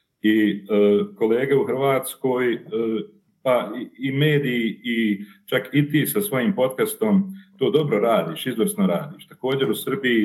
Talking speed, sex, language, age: 140 wpm, male, Croatian, 40-59